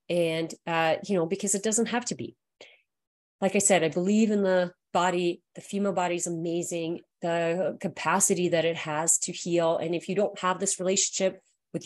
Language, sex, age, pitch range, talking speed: English, female, 30-49, 165-205 Hz, 190 wpm